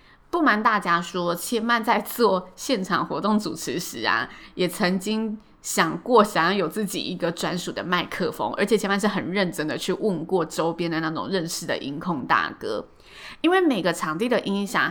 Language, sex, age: Chinese, female, 20-39